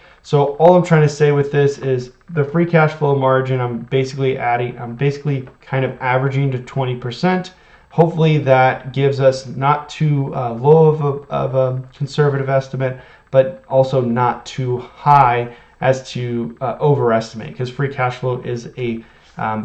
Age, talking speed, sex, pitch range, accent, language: 30-49, 160 wpm, male, 120-145 Hz, American, English